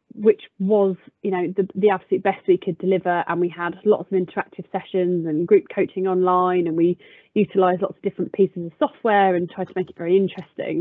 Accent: British